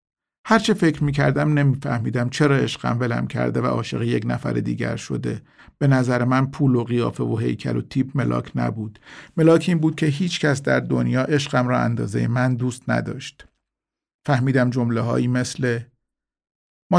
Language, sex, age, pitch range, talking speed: Persian, male, 50-69, 115-145 Hz, 165 wpm